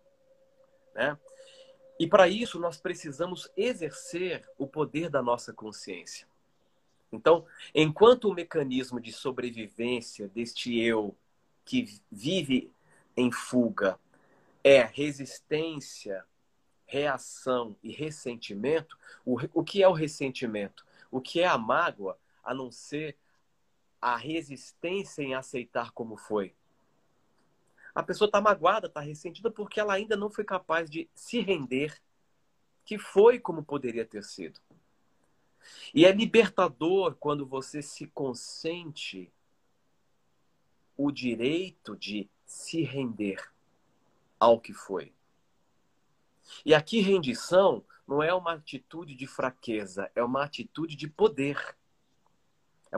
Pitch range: 125-185 Hz